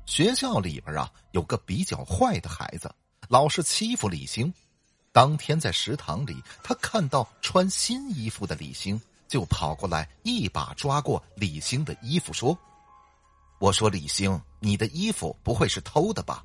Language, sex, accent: Chinese, male, native